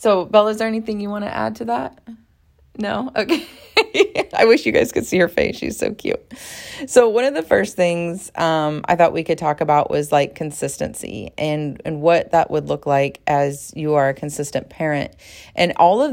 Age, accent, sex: 30-49, American, female